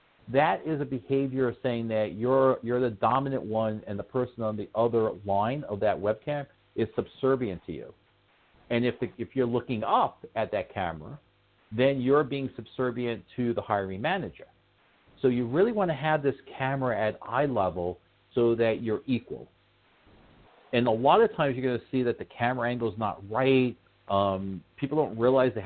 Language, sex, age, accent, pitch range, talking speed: English, male, 50-69, American, 100-130 Hz, 185 wpm